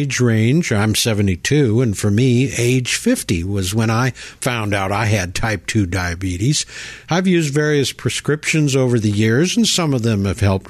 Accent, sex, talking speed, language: American, male, 175 wpm, English